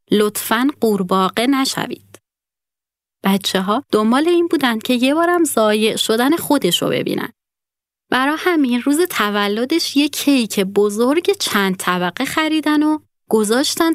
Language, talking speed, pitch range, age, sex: Persian, 120 wpm, 195-270 Hz, 30-49, female